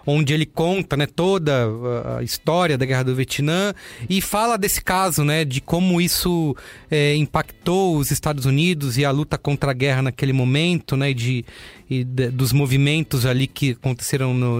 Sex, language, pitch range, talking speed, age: male, English, 135-175 Hz, 175 wpm, 30-49